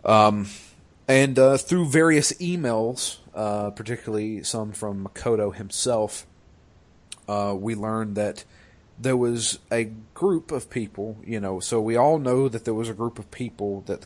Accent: American